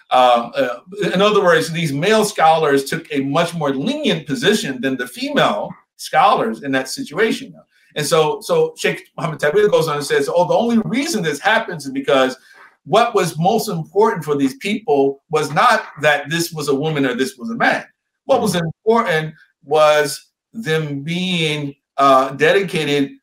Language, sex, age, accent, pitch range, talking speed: English, male, 50-69, American, 140-195 Hz, 170 wpm